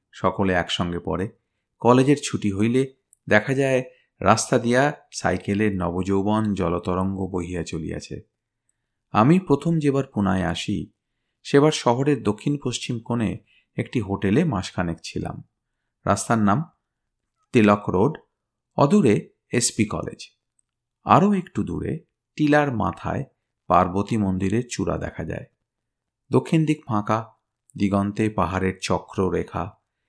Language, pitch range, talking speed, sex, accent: Bengali, 95-125 Hz, 105 wpm, male, native